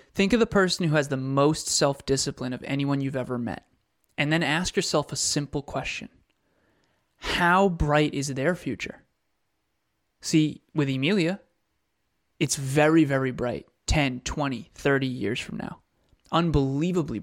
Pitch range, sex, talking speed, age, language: 135-160 Hz, male, 145 wpm, 20-39, English